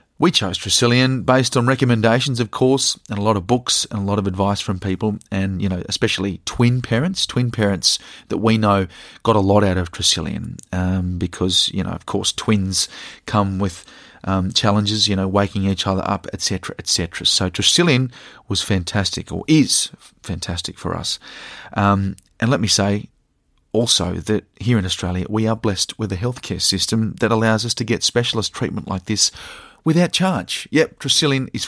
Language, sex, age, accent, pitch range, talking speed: English, male, 30-49, Australian, 95-120 Hz, 190 wpm